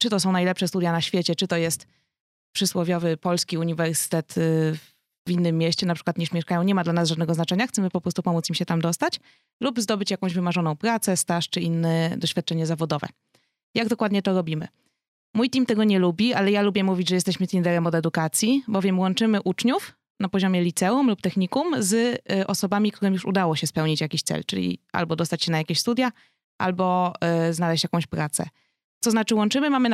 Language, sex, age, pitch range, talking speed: Polish, female, 20-39, 170-210 Hz, 190 wpm